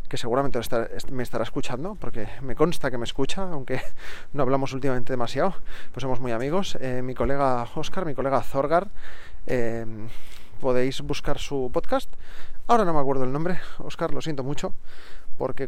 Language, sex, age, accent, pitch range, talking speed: Spanish, male, 30-49, Spanish, 125-165 Hz, 165 wpm